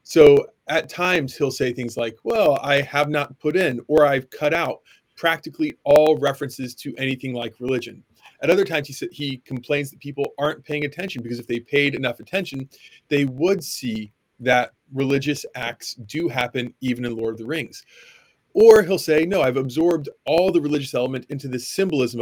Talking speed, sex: 185 wpm, male